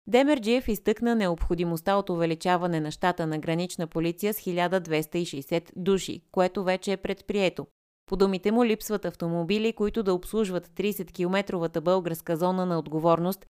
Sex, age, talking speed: female, 20-39, 130 wpm